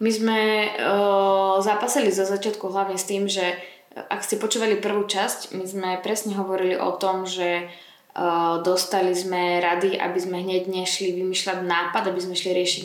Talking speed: 175 wpm